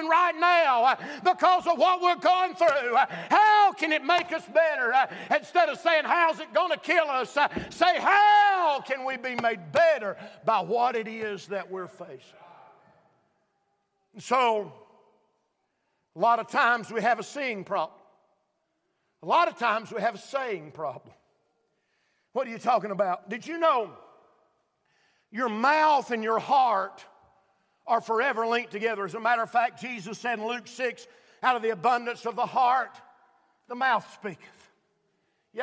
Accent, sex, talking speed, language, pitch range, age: American, male, 160 wpm, English, 210-285 Hz, 50-69